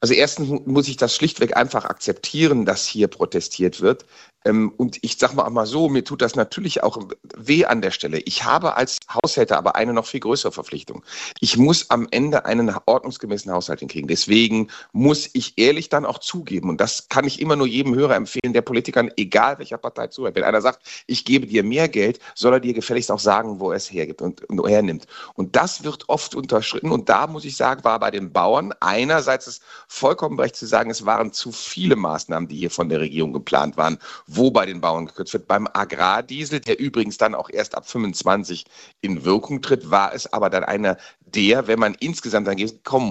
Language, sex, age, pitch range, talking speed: German, male, 40-59, 100-135 Hz, 205 wpm